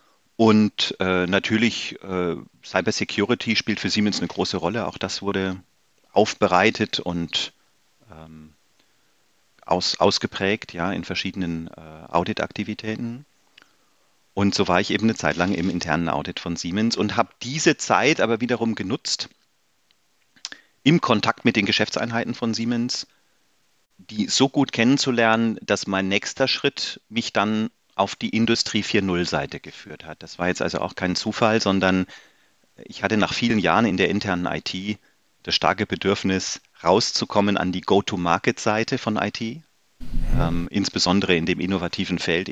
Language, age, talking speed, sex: German, 40-59, 135 wpm, male